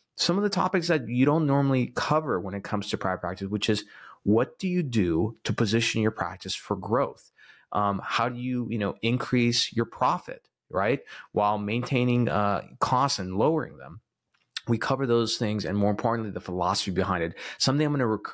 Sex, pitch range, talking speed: male, 95-120 Hz, 195 wpm